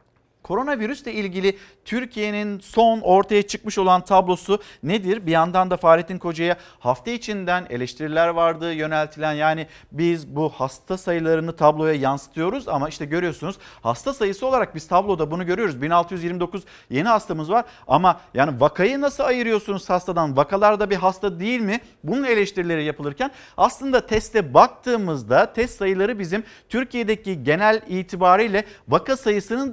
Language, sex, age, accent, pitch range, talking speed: Turkish, male, 50-69, native, 170-230 Hz, 135 wpm